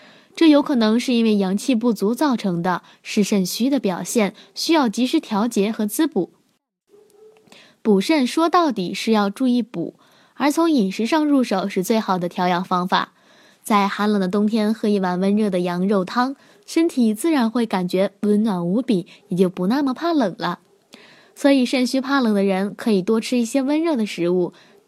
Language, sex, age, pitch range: Chinese, female, 10-29, 195-255 Hz